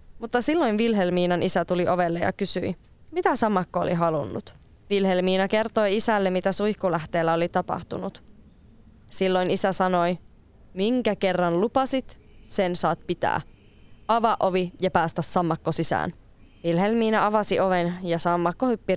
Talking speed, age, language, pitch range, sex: 125 wpm, 20-39, Finnish, 175-210 Hz, female